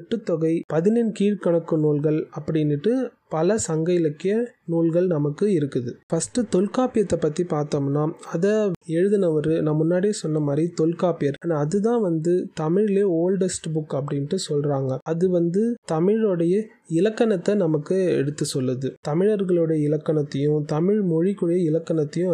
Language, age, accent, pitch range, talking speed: Tamil, 20-39, native, 155-195 Hz, 85 wpm